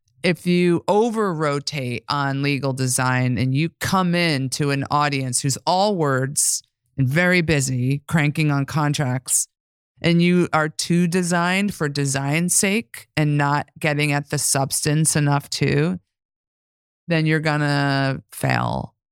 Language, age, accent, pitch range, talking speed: English, 30-49, American, 130-165 Hz, 140 wpm